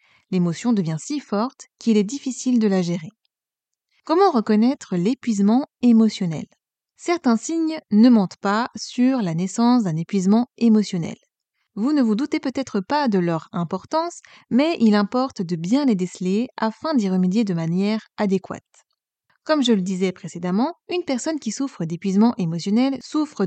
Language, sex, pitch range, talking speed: French, female, 195-255 Hz, 150 wpm